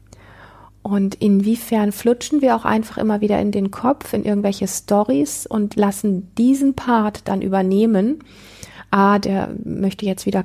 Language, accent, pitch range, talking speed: German, German, 190-225 Hz, 145 wpm